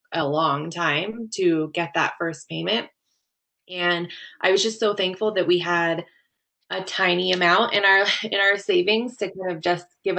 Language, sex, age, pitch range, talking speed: English, female, 20-39, 165-190 Hz, 175 wpm